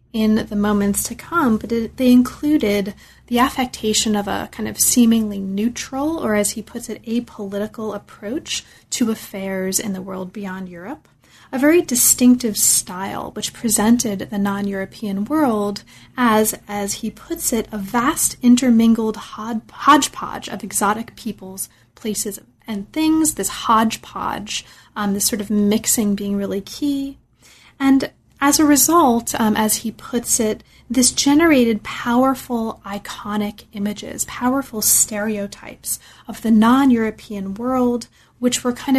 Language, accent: English, American